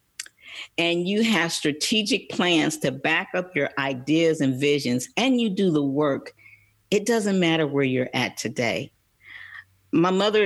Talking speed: 150 wpm